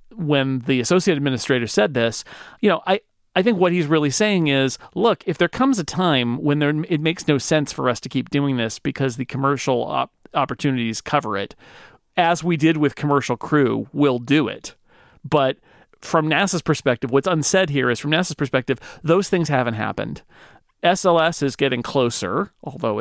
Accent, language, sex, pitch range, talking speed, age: American, English, male, 130-170 Hz, 185 wpm, 40-59